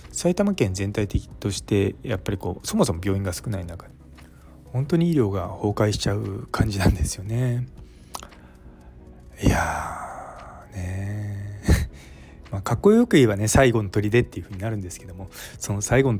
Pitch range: 90-120 Hz